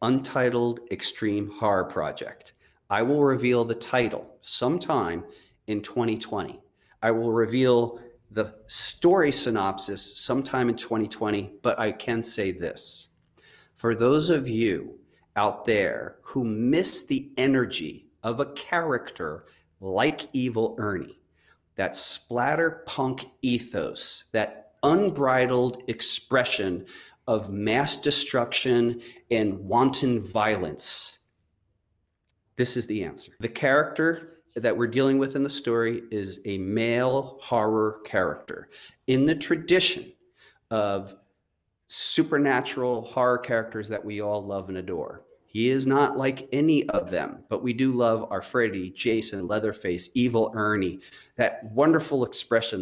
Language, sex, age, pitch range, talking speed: English, male, 40-59, 105-135 Hz, 120 wpm